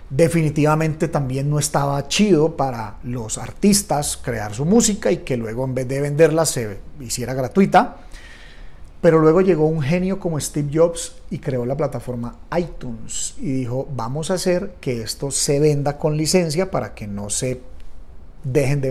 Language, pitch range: Spanish, 125-180 Hz